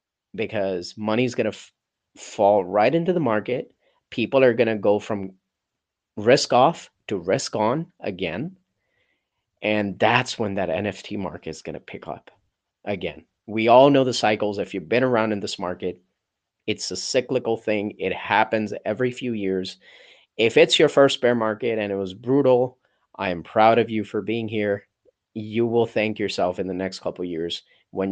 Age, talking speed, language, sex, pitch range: 30-49, 180 wpm, English, male, 100-125 Hz